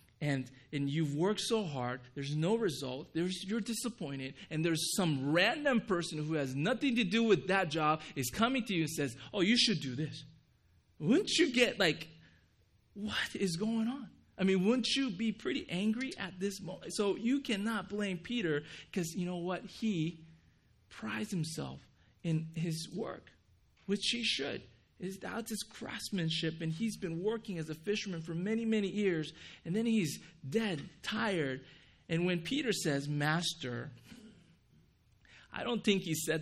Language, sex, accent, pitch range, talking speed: English, male, American, 150-210 Hz, 165 wpm